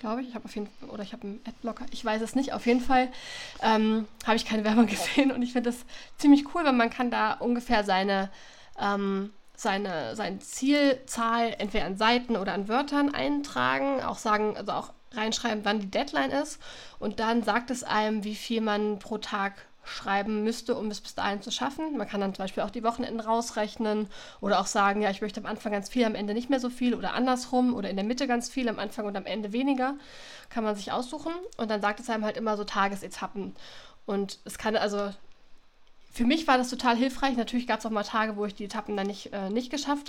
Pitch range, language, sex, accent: 215-260 Hz, German, female, German